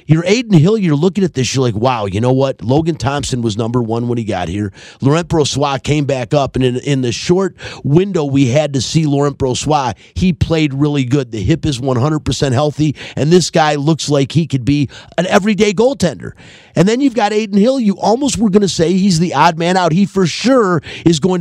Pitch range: 130-165 Hz